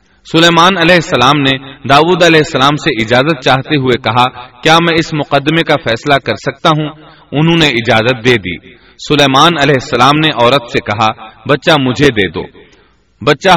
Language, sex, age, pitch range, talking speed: Urdu, male, 30-49, 125-160 Hz, 160 wpm